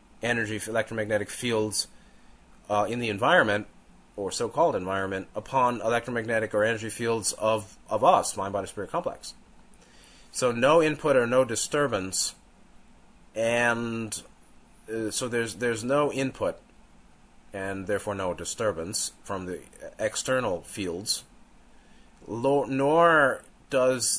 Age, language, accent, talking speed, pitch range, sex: 30-49, English, American, 105 wpm, 105-130 Hz, male